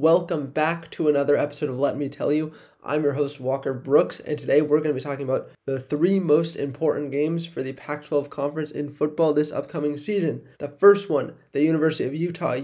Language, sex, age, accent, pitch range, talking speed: English, male, 20-39, American, 145-175 Hz, 210 wpm